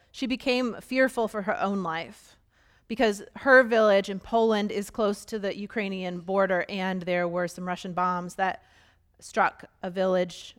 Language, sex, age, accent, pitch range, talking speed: English, female, 30-49, American, 180-215 Hz, 160 wpm